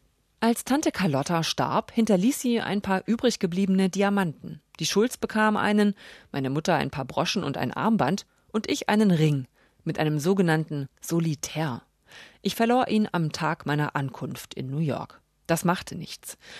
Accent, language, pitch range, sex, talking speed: German, German, 145-215 Hz, female, 155 wpm